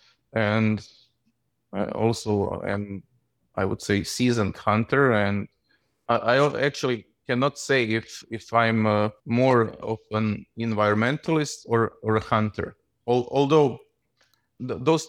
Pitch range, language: 105-125 Hz, English